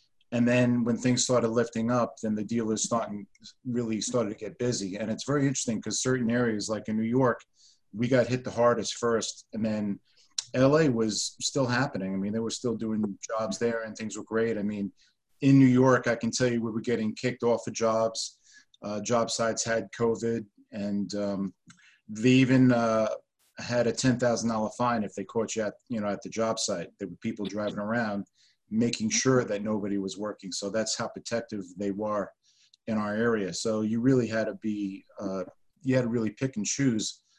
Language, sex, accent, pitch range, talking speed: English, male, American, 105-125 Hz, 200 wpm